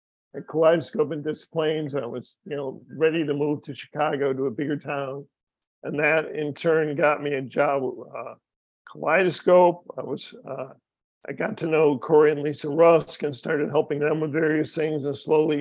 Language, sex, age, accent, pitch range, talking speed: English, male, 50-69, American, 145-160 Hz, 185 wpm